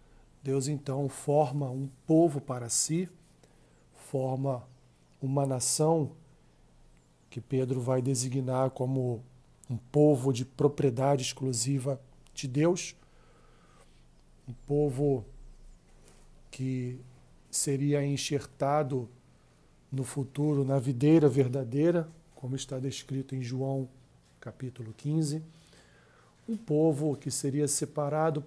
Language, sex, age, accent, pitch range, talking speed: Portuguese, male, 40-59, Brazilian, 130-150 Hz, 95 wpm